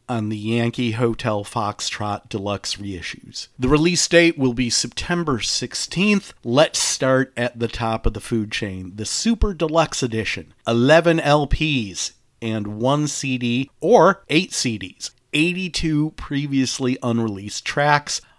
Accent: American